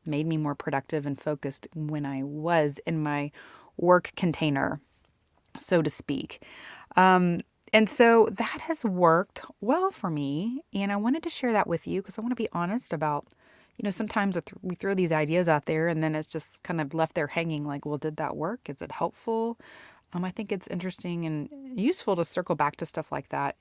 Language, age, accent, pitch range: English, 30-49, American, 155-195 Hz